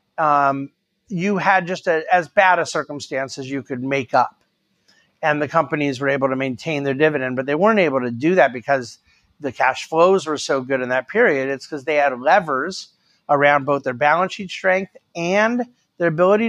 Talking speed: 195 wpm